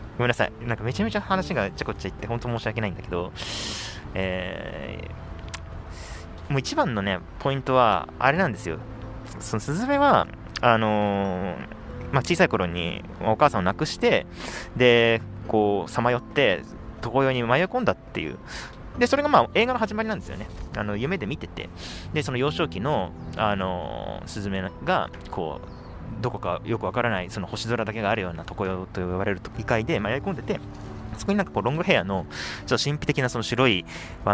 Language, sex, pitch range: Japanese, male, 95-125 Hz